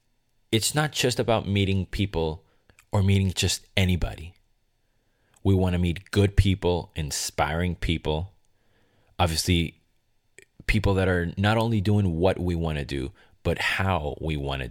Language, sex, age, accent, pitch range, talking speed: English, male, 30-49, American, 80-110 Hz, 130 wpm